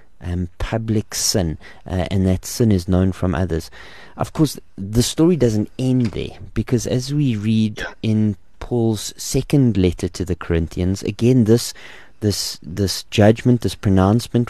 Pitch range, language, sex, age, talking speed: 95-120 Hz, English, male, 30-49, 150 wpm